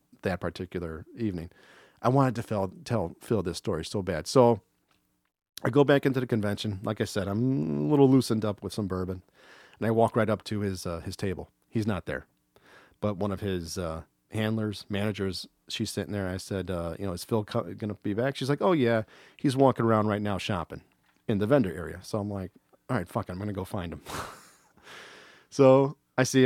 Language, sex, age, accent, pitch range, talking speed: English, male, 40-59, American, 95-120 Hz, 215 wpm